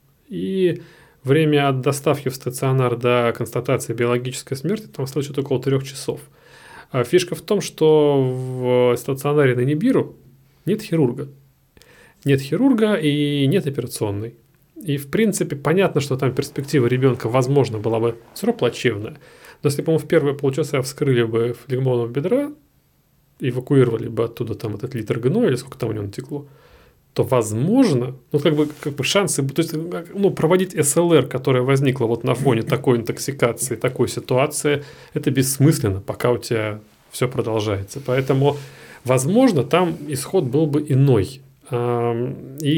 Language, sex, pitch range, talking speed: Russian, male, 125-155 Hz, 145 wpm